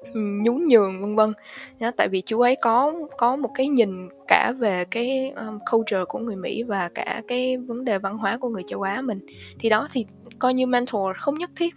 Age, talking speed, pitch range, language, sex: 10-29, 210 wpm, 200-255 Hz, Vietnamese, female